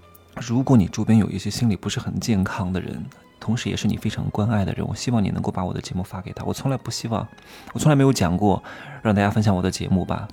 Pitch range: 100-125 Hz